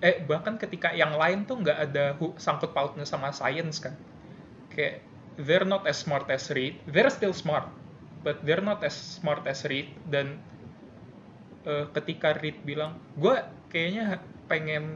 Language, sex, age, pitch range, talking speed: Indonesian, male, 20-39, 145-175 Hz, 150 wpm